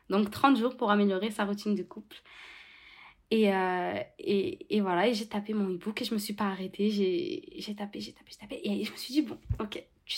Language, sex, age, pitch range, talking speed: French, female, 20-39, 205-295 Hz, 235 wpm